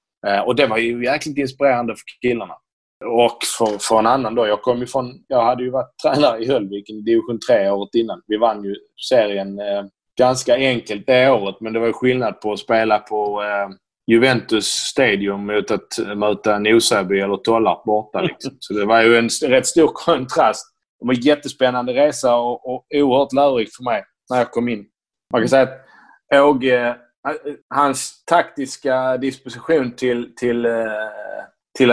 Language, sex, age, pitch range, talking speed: Swedish, male, 20-39, 105-130 Hz, 175 wpm